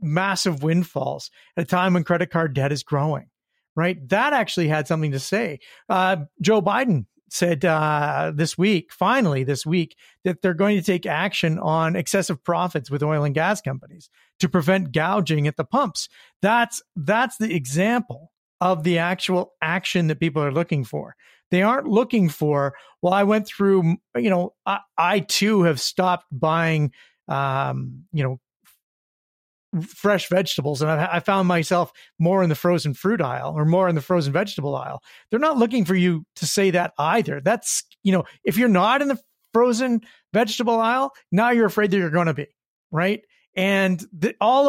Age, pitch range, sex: 40-59, 160-205 Hz, male